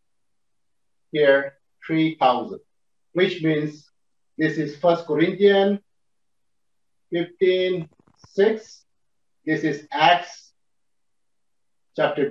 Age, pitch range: 50-69, 155-230 Hz